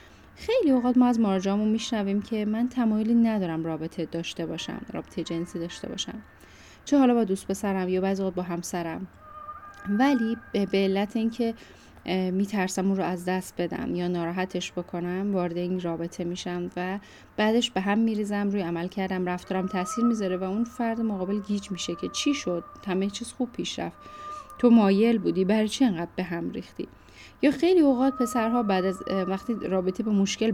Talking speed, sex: 170 wpm, female